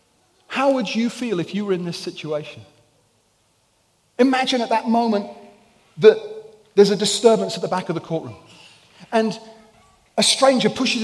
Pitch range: 195-260 Hz